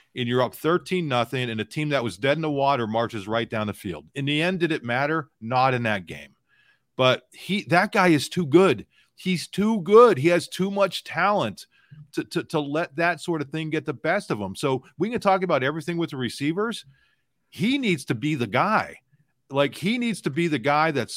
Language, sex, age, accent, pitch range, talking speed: English, male, 40-59, American, 115-155 Hz, 225 wpm